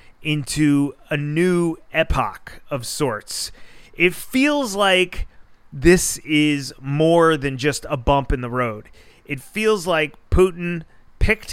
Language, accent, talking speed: English, American, 125 wpm